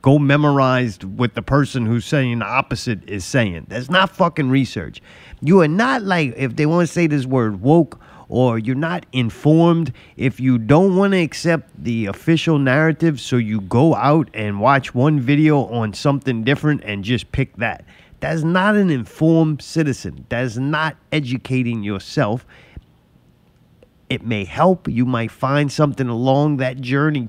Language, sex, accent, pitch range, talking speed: English, male, American, 120-165 Hz, 165 wpm